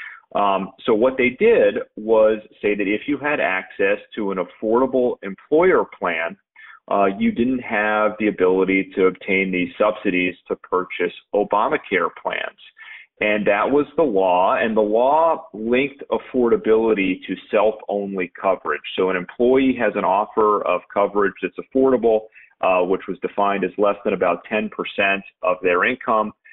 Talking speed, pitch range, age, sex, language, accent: 150 wpm, 95-115 Hz, 40-59, male, English, American